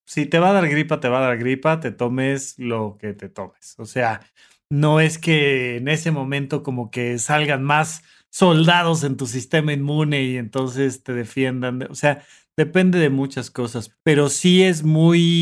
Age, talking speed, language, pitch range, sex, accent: 30-49, 185 wpm, Spanish, 135-180 Hz, male, Mexican